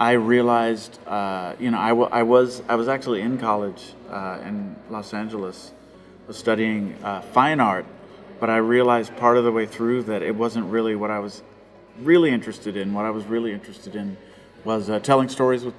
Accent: American